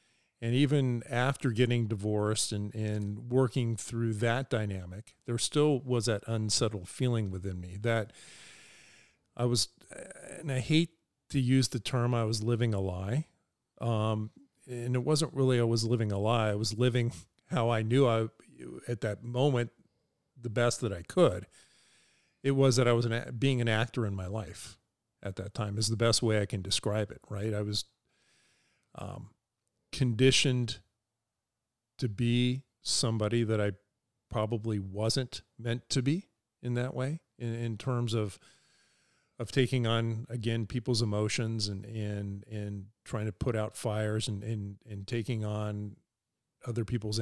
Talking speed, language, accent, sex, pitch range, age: 155 wpm, English, American, male, 105-125 Hz, 50-69